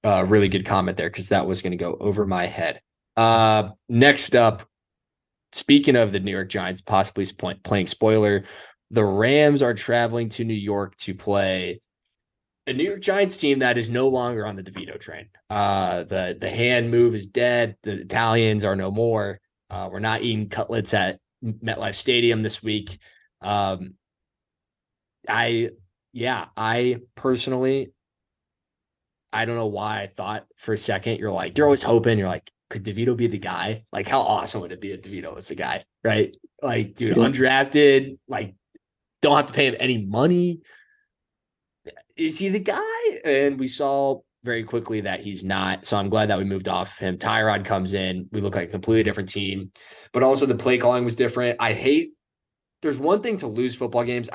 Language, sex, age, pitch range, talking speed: English, male, 20-39, 100-125 Hz, 180 wpm